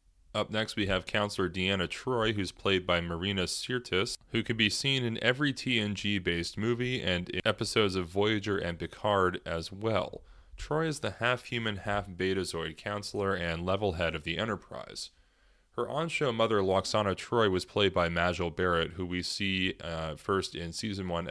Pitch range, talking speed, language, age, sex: 85-105 Hz, 165 wpm, English, 20-39, male